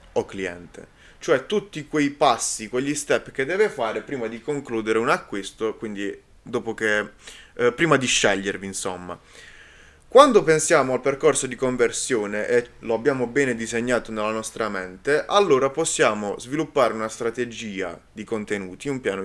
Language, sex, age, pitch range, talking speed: Italian, male, 20-39, 105-145 Hz, 145 wpm